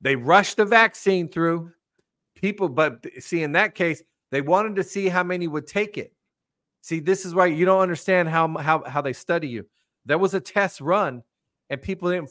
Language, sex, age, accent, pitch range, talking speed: English, male, 40-59, American, 155-205 Hz, 195 wpm